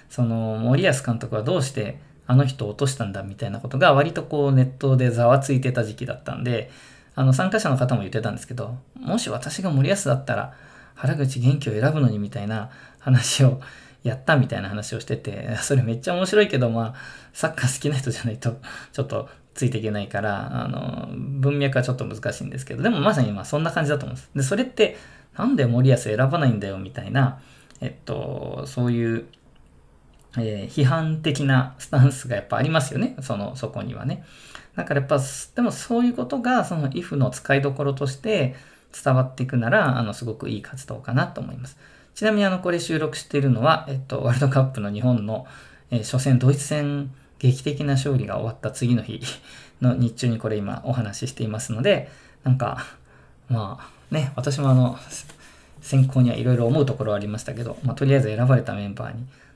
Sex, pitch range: male, 115-140 Hz